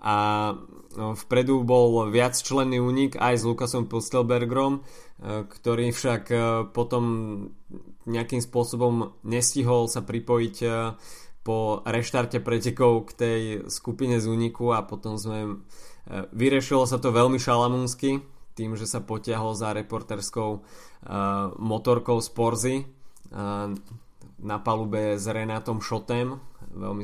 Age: 20-39